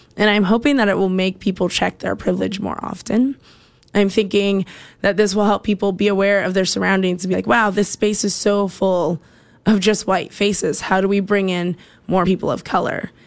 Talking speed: 215 wpm